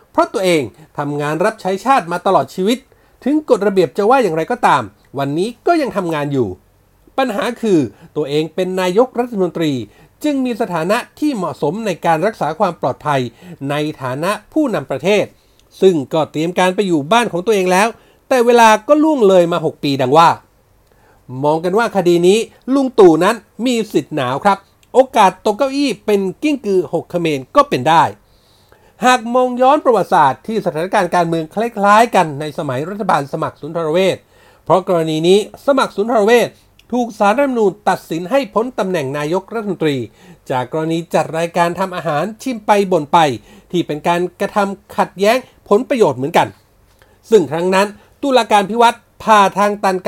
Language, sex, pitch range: Thai, male, 160-220 Hz